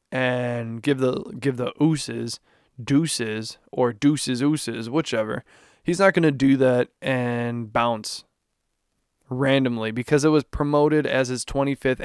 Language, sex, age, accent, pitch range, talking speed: English, male, 20-39, American, 125-145 Hz, 135 wpm